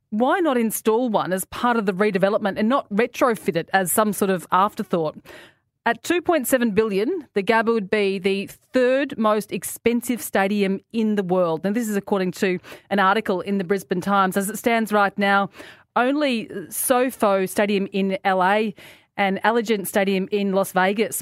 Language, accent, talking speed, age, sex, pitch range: English, Australian, 170 wpm, 30-49, female, 190-230 Hz